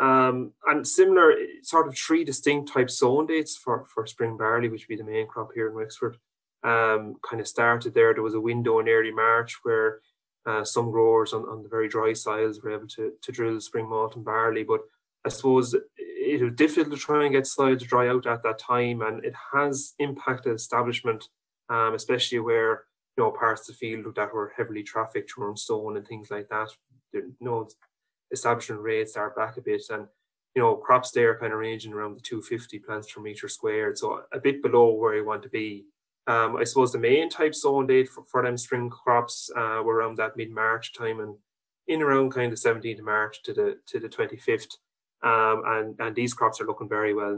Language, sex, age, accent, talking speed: English, male, 20-39, Irish, 220 wpm